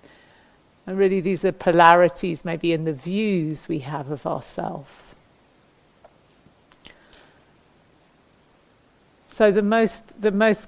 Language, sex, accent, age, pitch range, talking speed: English, female, British, 50-69, 175-200 Hz, 100 wpm